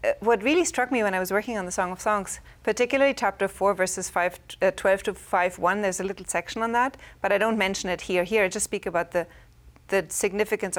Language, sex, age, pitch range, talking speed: English, female, 30-49, 185-220 Hz, 245 wpm